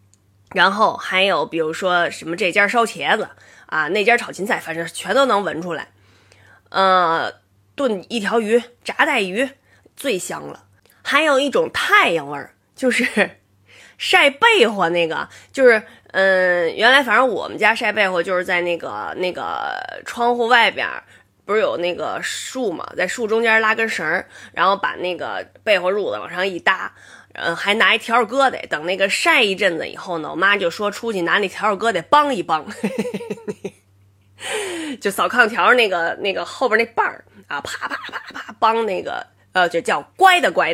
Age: 20-39